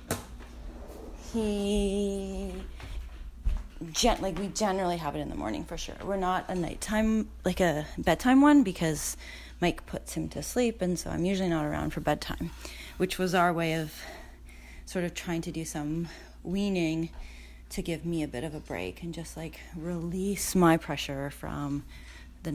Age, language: 30-49, English